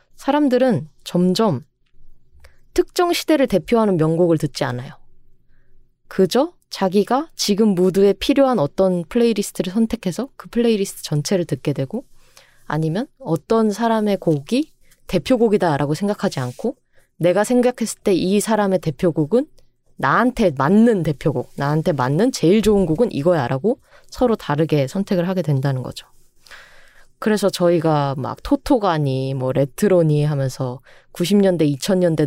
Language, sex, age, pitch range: Korean, female, 20-39, 145-210 Hz